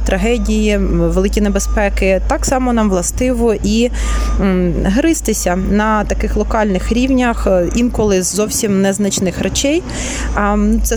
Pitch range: 185-235 Hz